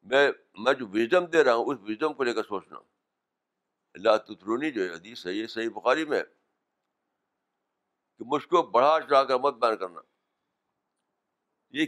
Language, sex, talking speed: Urdu, male, 165 wpm